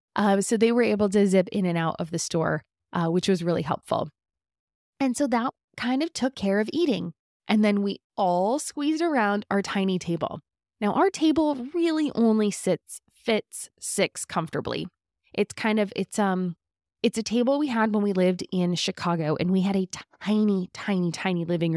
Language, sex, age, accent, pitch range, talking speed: English, female, 20-39, American, 175-235 Hz, 185 wpm